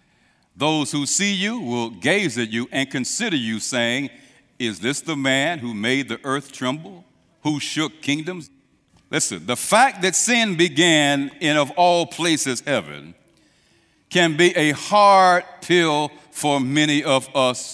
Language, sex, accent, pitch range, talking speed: English, male, American, 140-185 Hz, 150 wpm